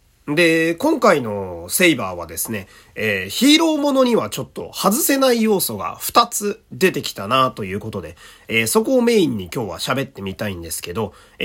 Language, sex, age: Japanese, male, 30-49